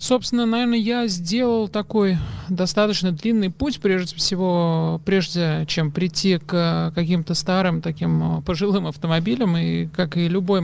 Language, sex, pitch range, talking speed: Russian, male, 165-200 Hz, 130 wpm